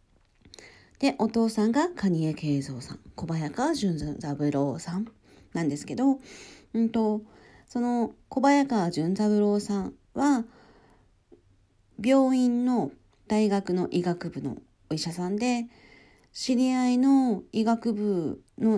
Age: 40-59